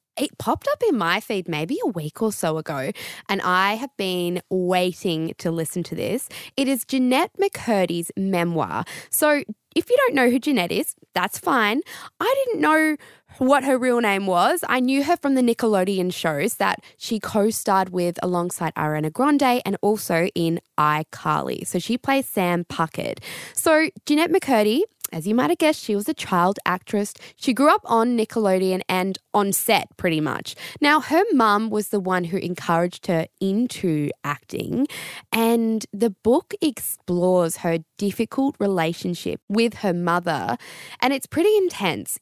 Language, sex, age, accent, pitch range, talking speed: English, female, 10-29, Australian, 175-265 Hz, 160 wpm